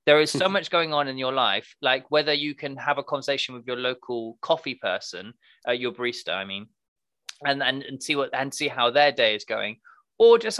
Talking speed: 225 wpm